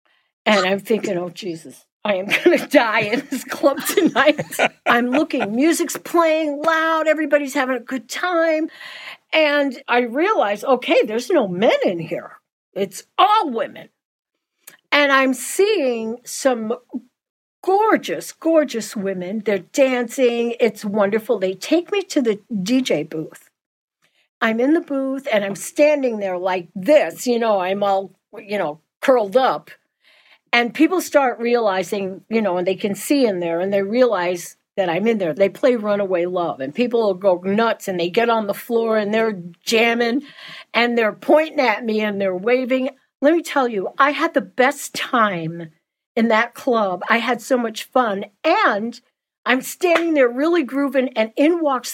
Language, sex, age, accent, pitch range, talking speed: English, female, 50-69, American, 205-285 Hz, 165 wpm